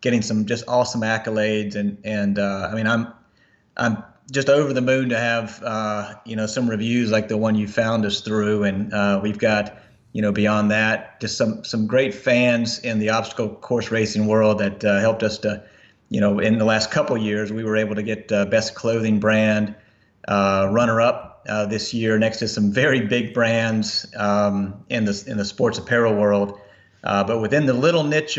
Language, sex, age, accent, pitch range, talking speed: English, male, 30-49, American, 105-115 Hz, 205 wpm